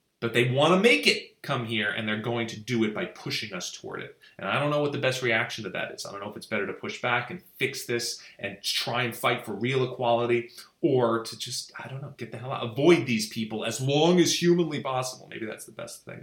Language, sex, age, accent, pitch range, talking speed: English, male, 30-49, American, 110-140 Hz, 265 wpm